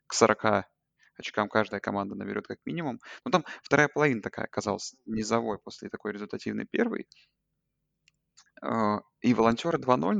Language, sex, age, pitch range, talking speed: Russian, male, 20-39, 105-120 Hz, 130 wpm